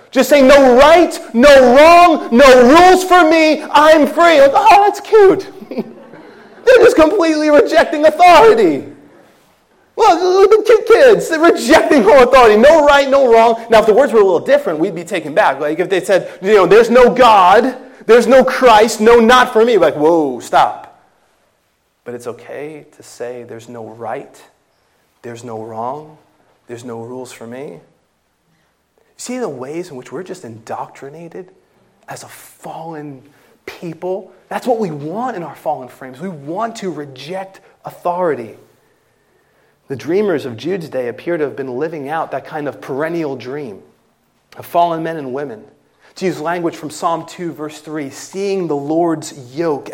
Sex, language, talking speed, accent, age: male, English, 165 wpm, American, 30-49